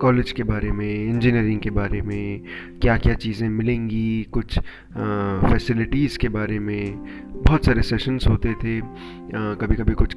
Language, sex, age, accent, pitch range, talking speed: Hindi, male, 30-49, native, 100-125 Hz, 150 wpm